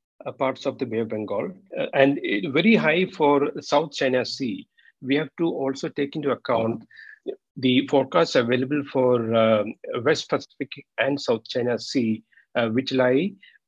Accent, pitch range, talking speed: Indian, 125-155 Hz, 160 wpm